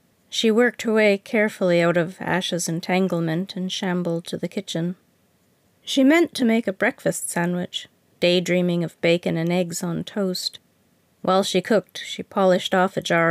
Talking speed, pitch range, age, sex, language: 160 wpm, 170-205 Hz, 40-59, female, English